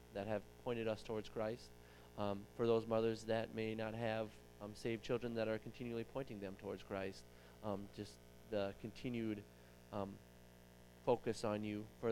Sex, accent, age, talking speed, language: male, American, 20-39, 165 wpm, English